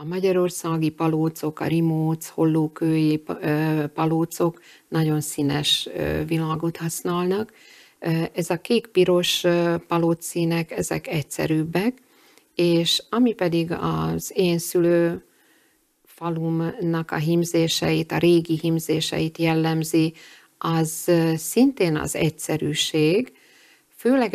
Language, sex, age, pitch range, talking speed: Hungarian, female, 50-69, 155-175 Hz, 90 wpm